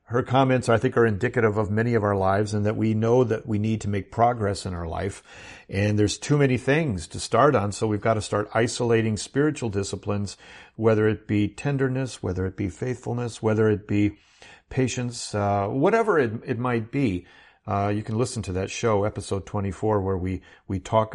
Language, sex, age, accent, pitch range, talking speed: English, male, 50-69, American, 105-130 Hz, 200 wpm